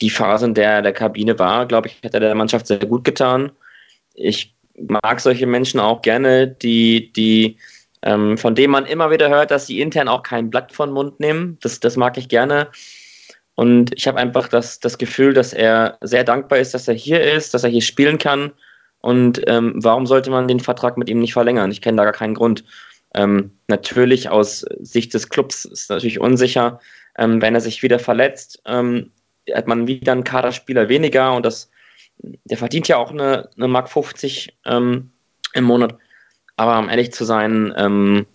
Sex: male